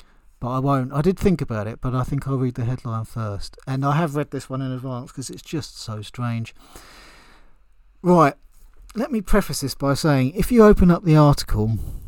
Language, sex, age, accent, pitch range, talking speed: English, male, 40-59, British, 110-150 Hz, 210 wpm